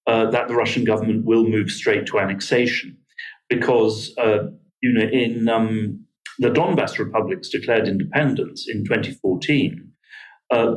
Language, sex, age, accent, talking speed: English, male, 40-59, British, 135 wpm